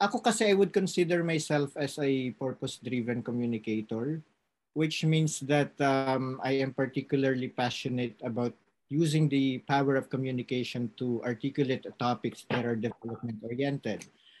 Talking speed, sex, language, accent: 125 wpm, male, Filipino, native